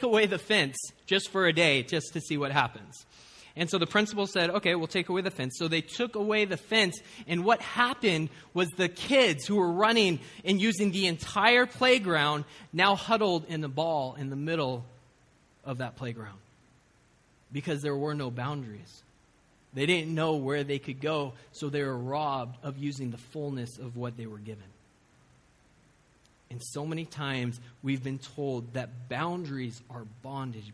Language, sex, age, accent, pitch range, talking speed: English, male, 20-39, American, 125-165 Hz, 175 wpm